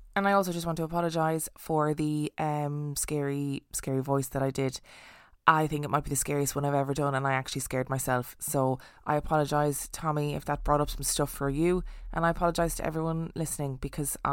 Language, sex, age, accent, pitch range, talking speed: English, female, 20-39, Irish, 145-180 Hz, 215 wpm